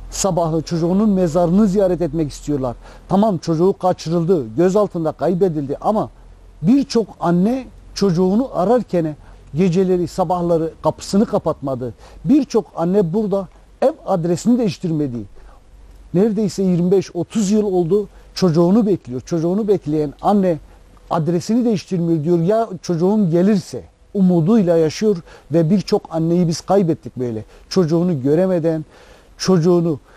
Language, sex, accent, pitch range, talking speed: Turkish, male, native, 160-210 Hz, 105 wpm